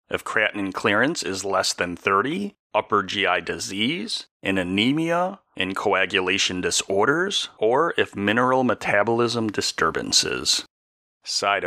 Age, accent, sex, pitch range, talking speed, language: 40-59, American, male, 95-140 Hz, 110 wpm, English